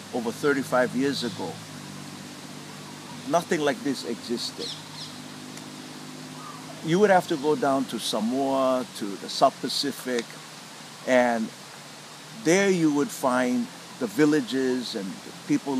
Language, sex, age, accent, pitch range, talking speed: English, male, 60-79, American, 120-155 Hz, 110 wpm